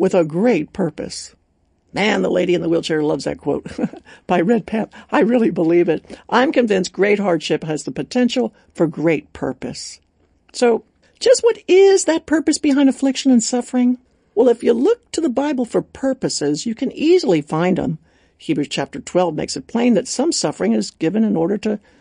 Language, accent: English, American